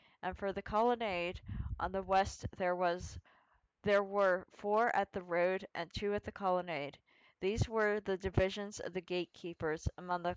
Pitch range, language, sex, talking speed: 175-200 Hz, English, female, 170 wpm